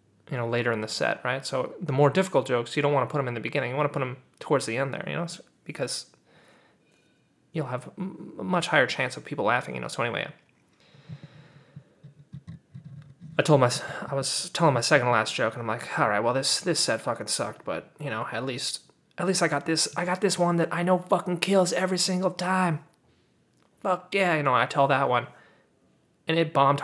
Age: 20-39